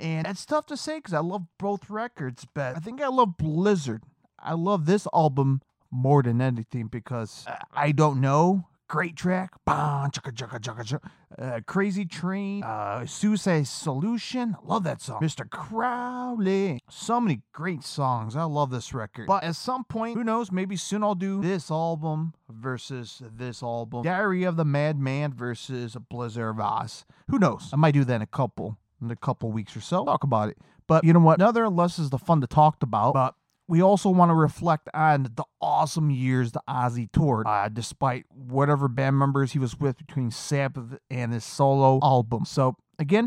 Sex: male